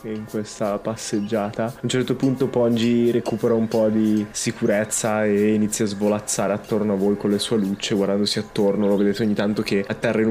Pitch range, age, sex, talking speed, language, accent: 105-125 Hz, 20-39, male, 190 wpm, Italian, native